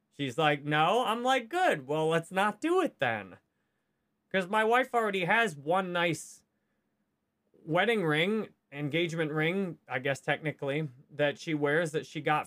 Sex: male